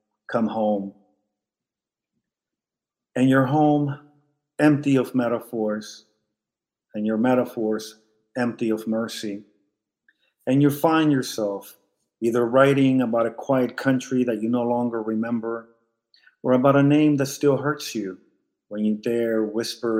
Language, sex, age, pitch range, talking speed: English, male, 50-69, 110-130 Hz, 125 wpm